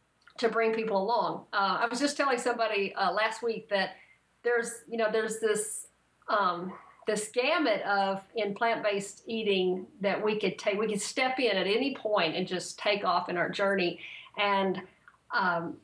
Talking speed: 175 wpm